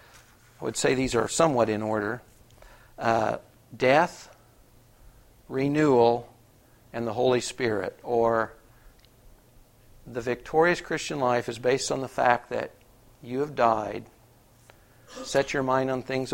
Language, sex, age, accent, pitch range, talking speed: English, male, 50-69, American, 115-145 Hz, 125 wpm